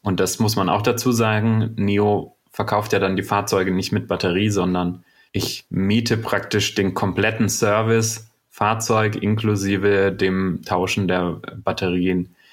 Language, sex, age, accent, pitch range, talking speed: German, male, 30-49, German, 90-110 Hz, 140 wpm